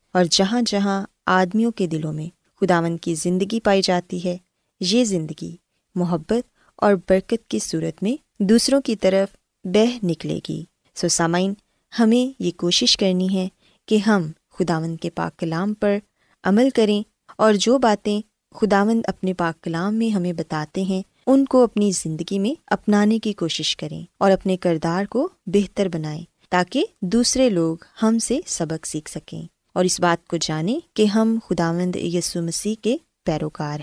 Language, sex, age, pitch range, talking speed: Urdu, female, 20-39, 170-220 Hz, 160 wpm